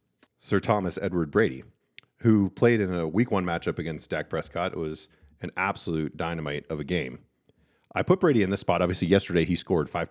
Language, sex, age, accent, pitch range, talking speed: English, male, 40-59, American, 85-110 Hz, 195 wpm